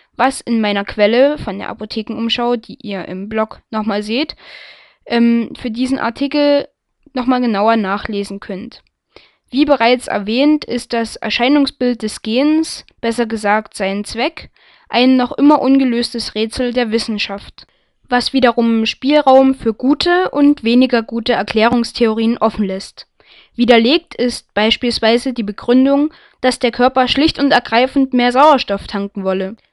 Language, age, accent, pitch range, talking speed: German, 10-29, German, 225-265 Hz, 135 wpm